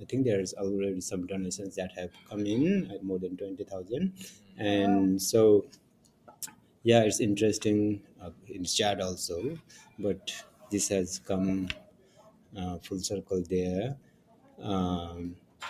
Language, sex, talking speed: English, male, 120 wpm